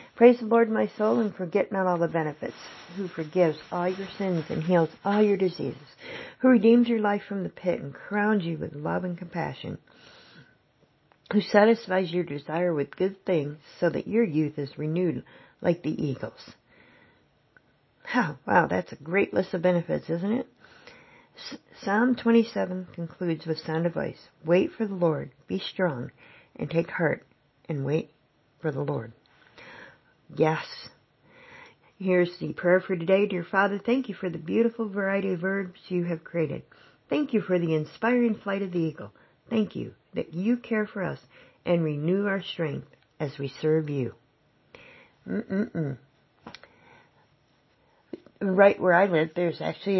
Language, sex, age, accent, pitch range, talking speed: English, female, 50-69, American, 160-205 Hz, 155 wpm